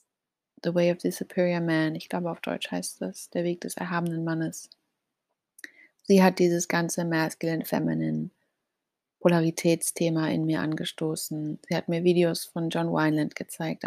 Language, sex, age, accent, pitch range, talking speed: German, female, 30-49, German, 165-190 Hz, 145 wpm